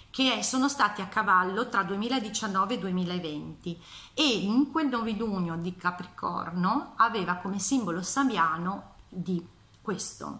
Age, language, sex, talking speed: 30-49, Italian, female, 120 wpm